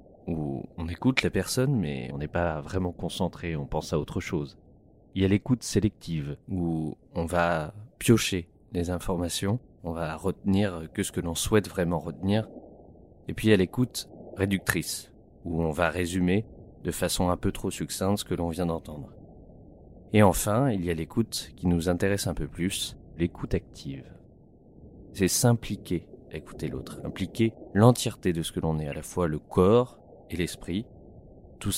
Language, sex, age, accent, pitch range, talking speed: French, male, 30-49, French, 85-105 Hz, 175 wpm